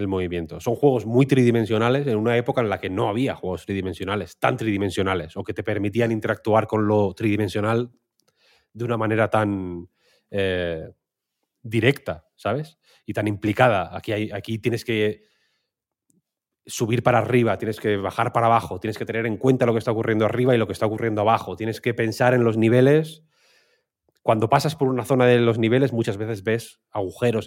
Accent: Spanish